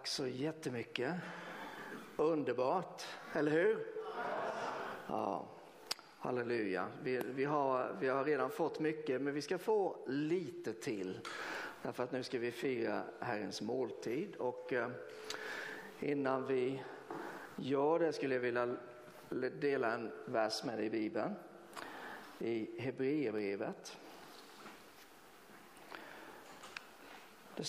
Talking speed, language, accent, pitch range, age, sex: 105 wpm, Swedish, native, 130-210 Hz, 50-69, male